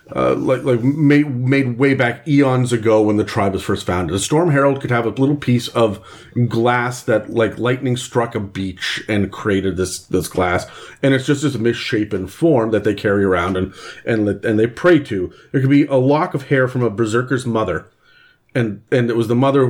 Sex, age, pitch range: male, 40-59, 100-125 Hz